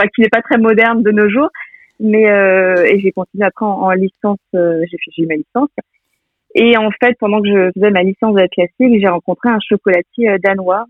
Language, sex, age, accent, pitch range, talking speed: French, female, 30-49, French, 190-225 Hz, 215 wpm